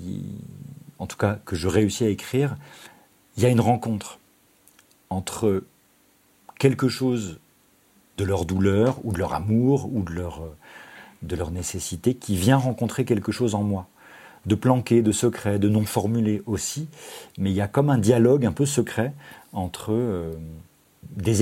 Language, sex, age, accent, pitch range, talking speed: French, male, 40-59, French, 100-130 Hz, 160 wpm